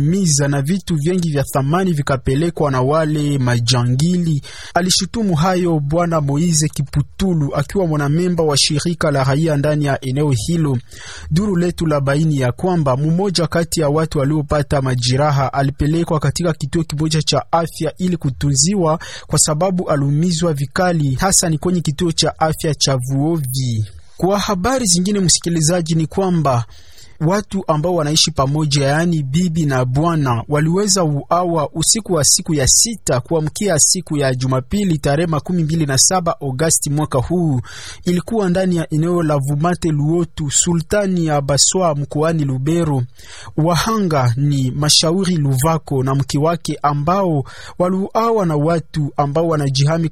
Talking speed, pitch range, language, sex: 135 wpm, 140-175 Hz, English, male